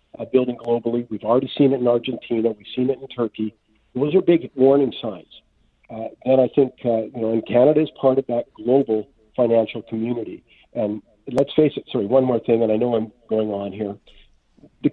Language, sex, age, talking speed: English, male, 50-69, 200 wpm